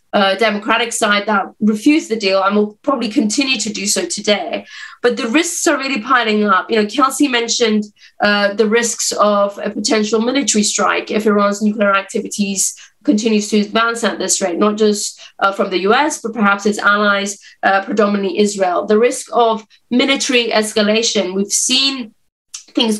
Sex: female